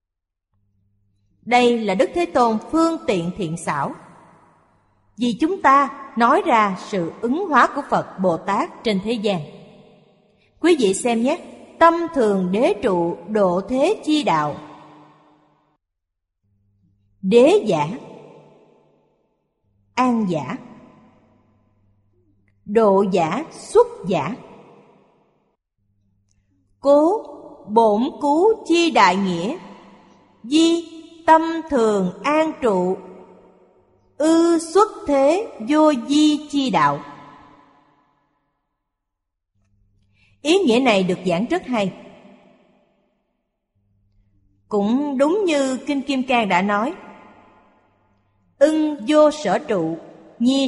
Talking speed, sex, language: 95 wpm, female, Vietnamese